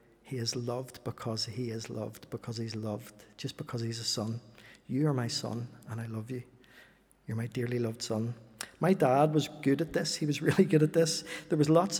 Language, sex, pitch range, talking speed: English, male, 125-155 Hz, 215 wpm